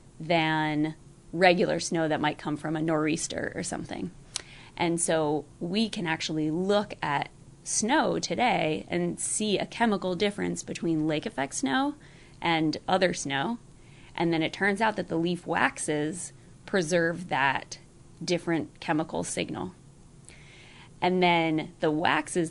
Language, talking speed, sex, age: English, 135 wpm, female, 20-39